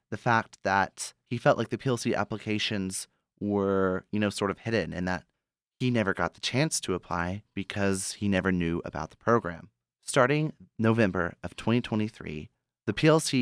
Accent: American